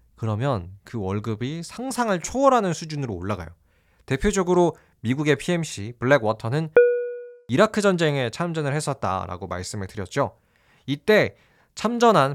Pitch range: 105-175 Hz